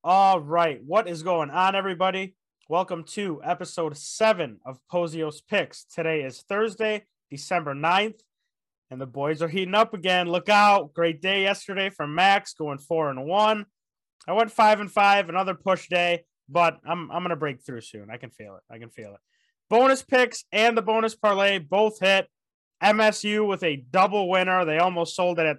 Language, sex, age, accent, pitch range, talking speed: English, male, 20-39, American, 165-200 Hz, 185 wpm